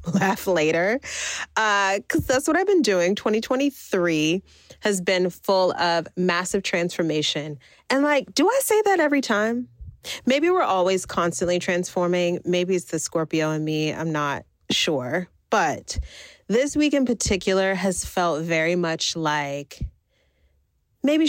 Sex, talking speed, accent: female, 140 wpm, American